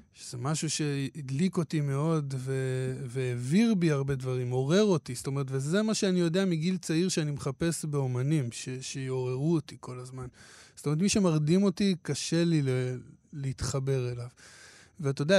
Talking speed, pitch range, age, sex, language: 150 wpm, 135-170 Hz, 20-39, male, Hebrew